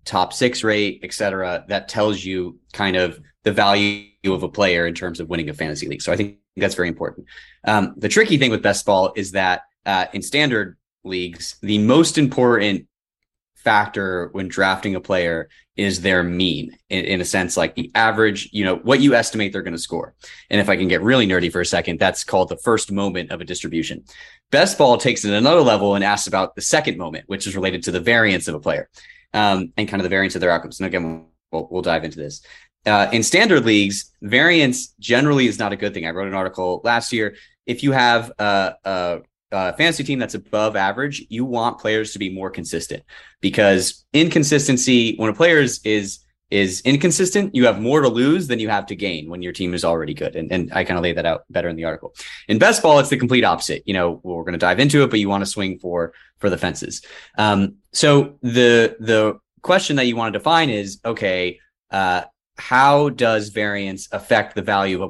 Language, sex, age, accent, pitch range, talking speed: English, male, 20-39, American, 90-115 Hz, 220 wpm